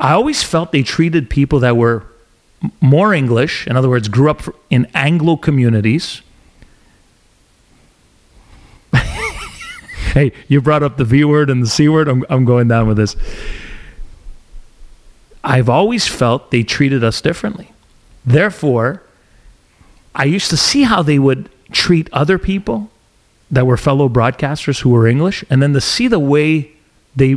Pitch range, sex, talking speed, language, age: 115-155 Hz, male, 145 wpm, English, 40-59